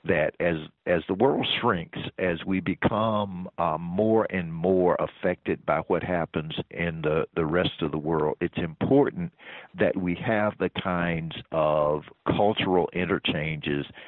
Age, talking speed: 50-69, 145 wpm